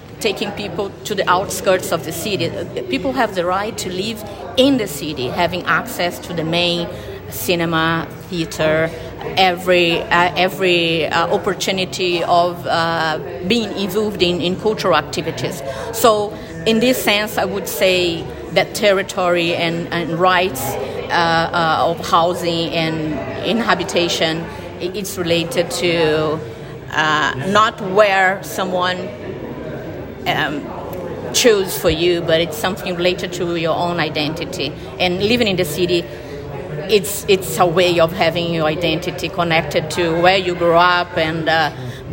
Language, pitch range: English, 160-185 Hz